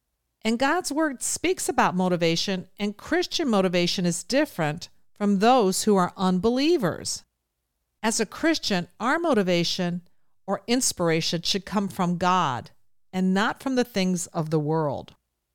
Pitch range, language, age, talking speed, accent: 165-235 Hz, English, 50-69, 135 wpm, American